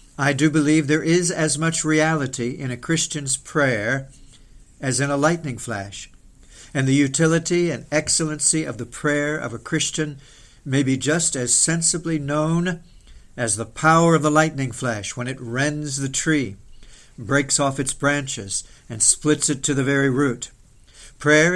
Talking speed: 160 wpm